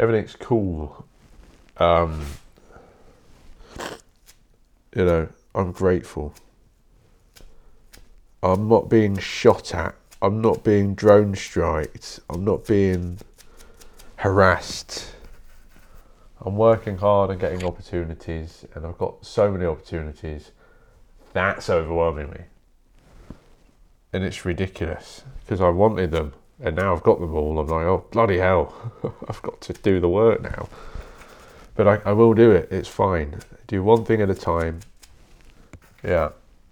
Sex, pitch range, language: male, 85-115 Hz, English